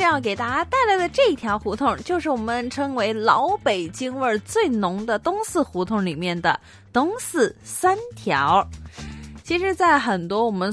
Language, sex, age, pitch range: Chinese, female, 20-39, 190-305 Hz